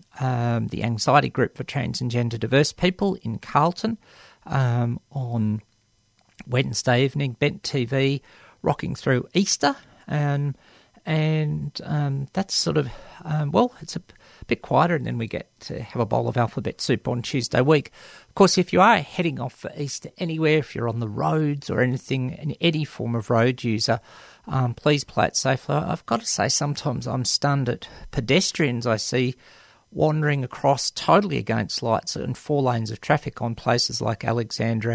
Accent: Australian